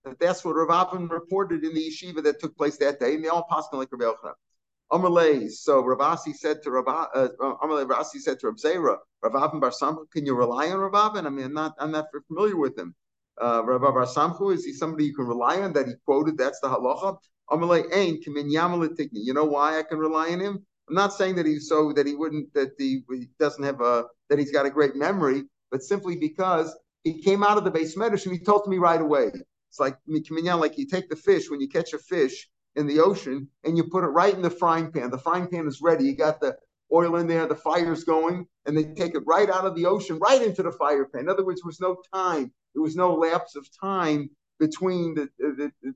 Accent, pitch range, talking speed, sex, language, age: American, 145-180 Hz, 245 wpm, male, English, 50-69